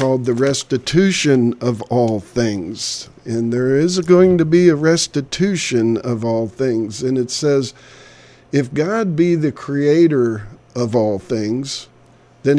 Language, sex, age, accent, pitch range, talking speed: English, male, 50-69, American, 120-150 Hz, 140 wpm